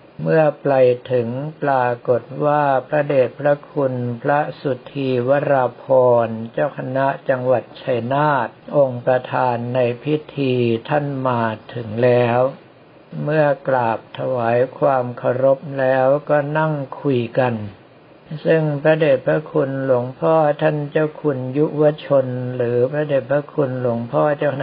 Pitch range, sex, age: 125-145 Hz, male, 60-79